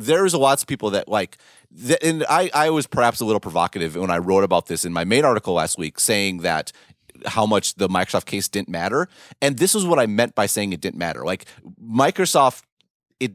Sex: male